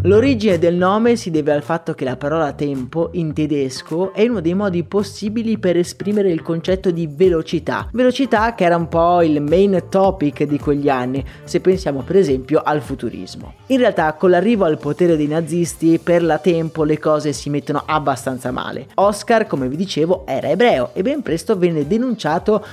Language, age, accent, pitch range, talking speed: Italian, 30-49, native, 150-195 Hz, 180 wpm